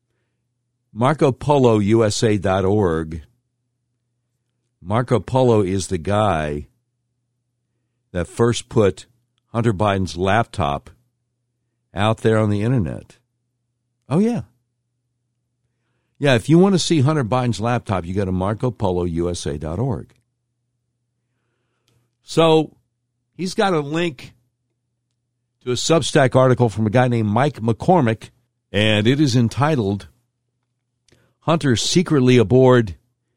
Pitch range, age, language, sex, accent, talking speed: 110-125 Hz, 60-79, English, male, American, 105 wpm